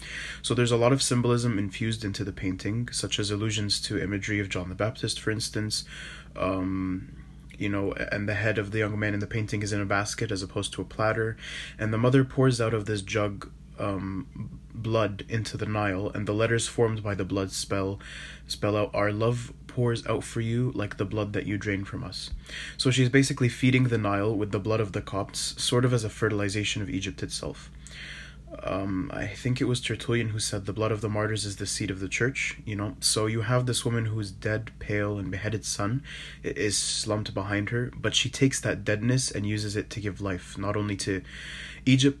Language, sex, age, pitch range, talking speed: English, male, 20-39, 100-115 Hz, 215 wpm